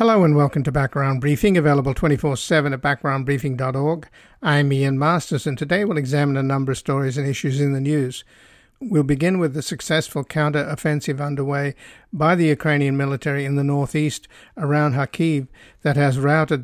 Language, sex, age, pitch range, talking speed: English, male, 50-69, 140-155 Hz, 160 wpm